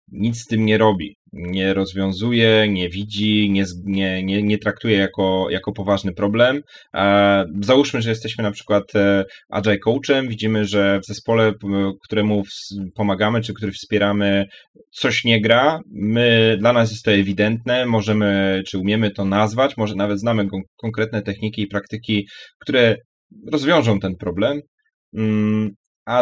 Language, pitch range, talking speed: Polish, 100-120 Hz, 135 wpm